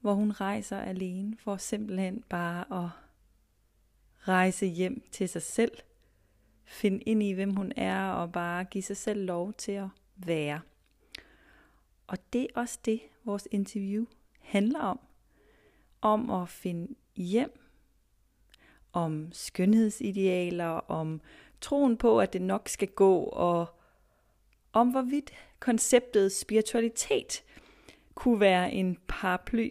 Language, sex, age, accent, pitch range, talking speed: Danish, female, 30-49, native, 170-225 Hz, 120 wpm